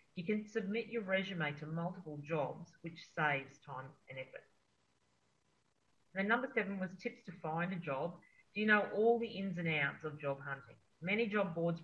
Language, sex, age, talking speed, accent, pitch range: English, female, 40-59, 180 wpm, Australian, 145-185 Hz